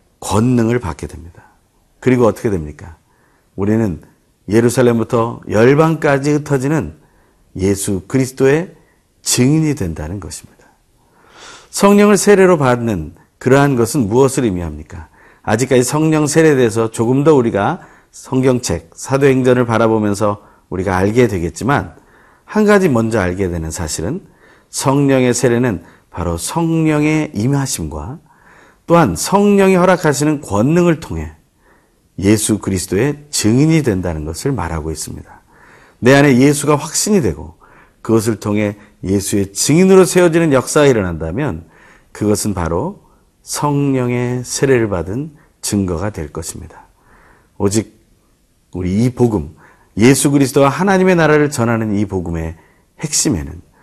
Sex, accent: male, native